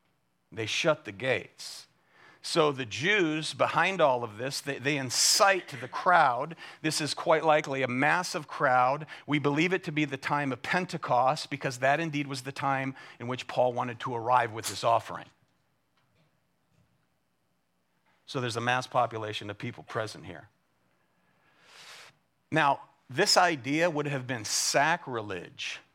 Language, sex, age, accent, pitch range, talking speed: English, male, 50-69, American, 120-150 Hz, 145 wpm